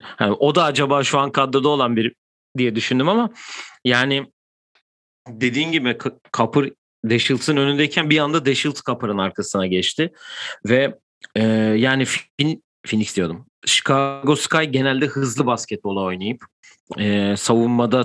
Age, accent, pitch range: 40-59, native, 105-140 Hz